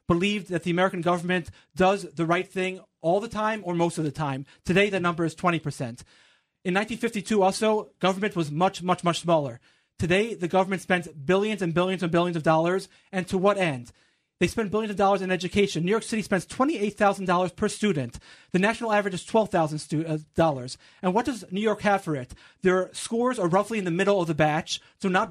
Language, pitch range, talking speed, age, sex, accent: English, 175-215 Hz, 200 wpm, 30-49, male, American